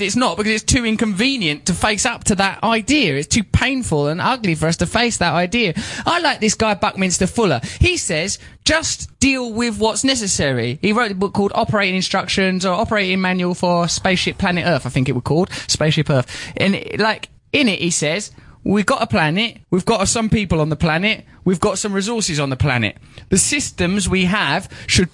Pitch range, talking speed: 145-210 Hz, 205 wpm